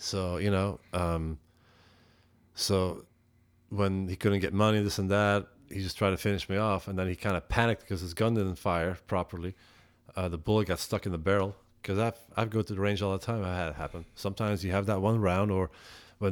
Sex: male